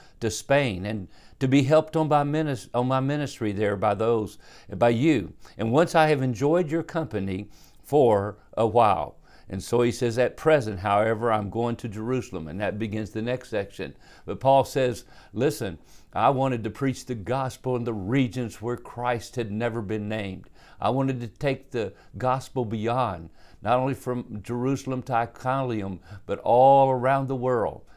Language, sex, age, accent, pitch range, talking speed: English, male, 50-69, American, 110-135 Hz, 175 wpm